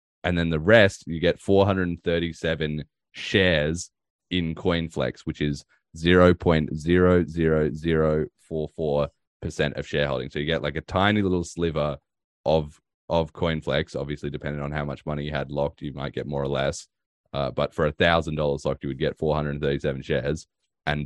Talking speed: 170 wpm